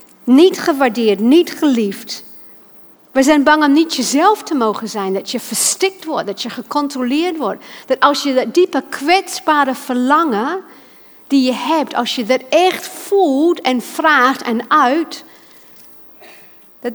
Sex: female